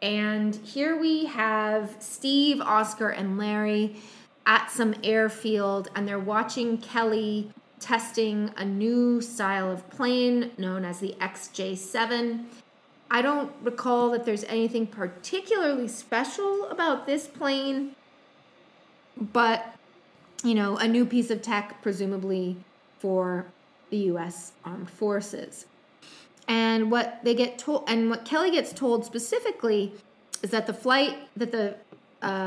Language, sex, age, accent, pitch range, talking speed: English, female, 20-39, American, 205-245 Hz, 125 wpm